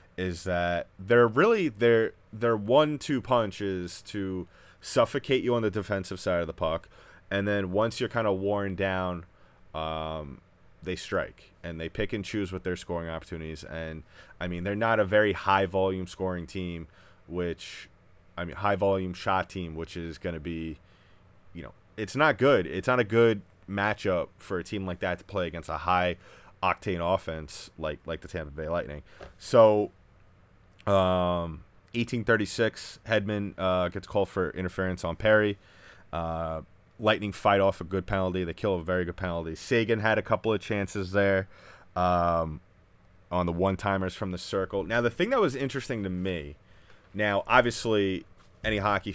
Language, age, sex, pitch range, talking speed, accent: English, 20-39, male, 90-105 Hz, 170 wpm, American